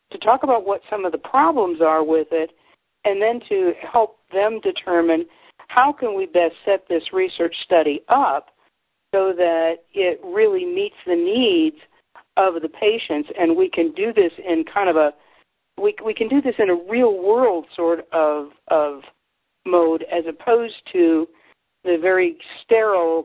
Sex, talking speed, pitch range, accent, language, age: female, 165 wpm, 165-215 Hz, American, English, 50-69